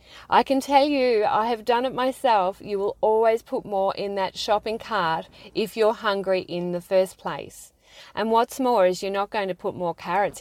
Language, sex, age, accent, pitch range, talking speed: English, female, 30-49, Australian, 175-220 Hz, 210 wpm